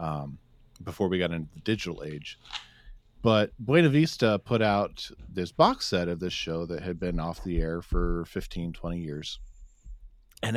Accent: American